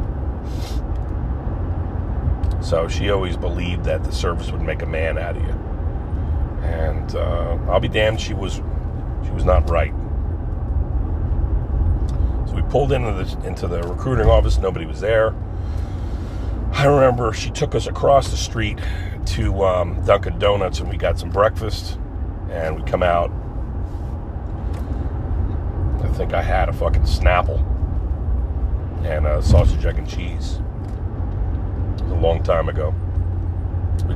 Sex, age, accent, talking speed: male, 40-59, American, 135 wpm